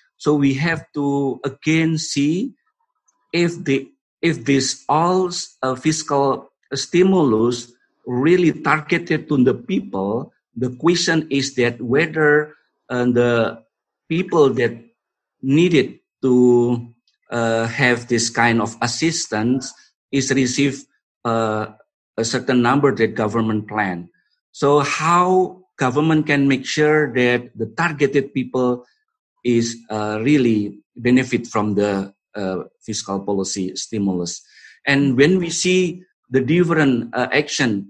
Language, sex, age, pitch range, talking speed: English, male, 50-69, 110-150 Hz, 115 wpm